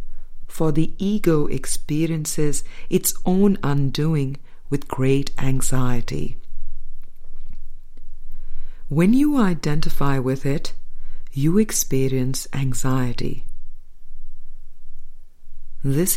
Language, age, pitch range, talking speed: English, 50-69, 130-170 Hz, 70 wpm